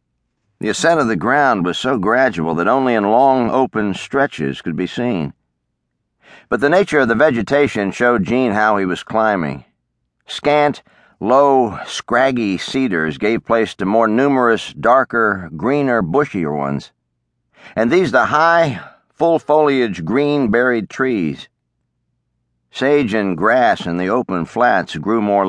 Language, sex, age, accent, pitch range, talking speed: English, male, 50-69, American, 80-130 Hz, 140 wpm